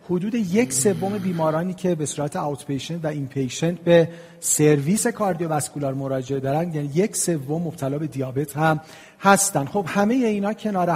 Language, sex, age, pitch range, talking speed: Persian, male, 40-59, 145-180 Hz, 155 wpm